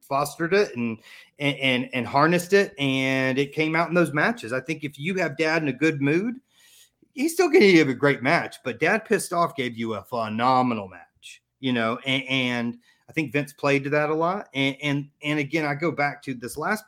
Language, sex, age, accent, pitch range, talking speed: English, male, 30-49, American, 125-160 Hz, 225 wpm